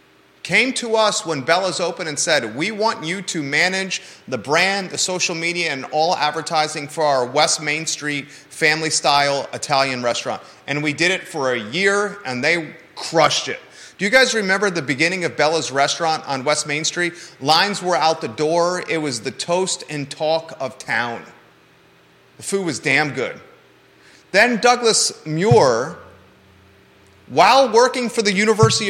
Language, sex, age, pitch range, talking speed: English, male, 30-49, 145-195 Hz, 165 wpm